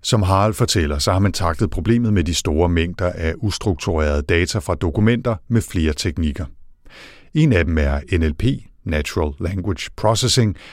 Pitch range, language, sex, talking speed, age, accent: 80-110 Hz, Danish, male, 155 wpm, 60-79, native